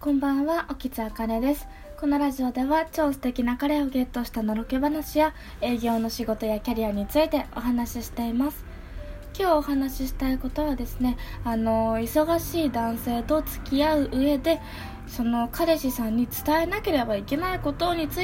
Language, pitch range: Japanese, 225-290 Hz